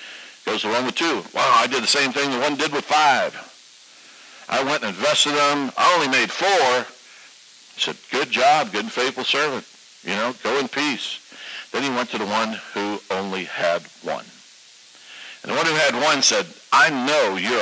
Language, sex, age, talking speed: English, male, 60-79, 200 wpm